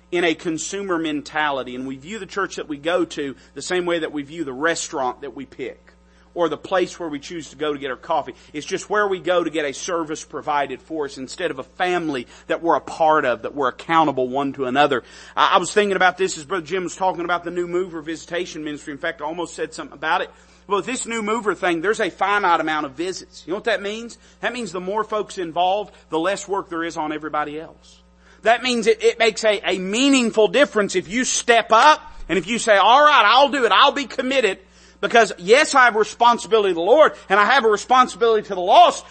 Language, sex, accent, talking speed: English, male, American, 245 wpm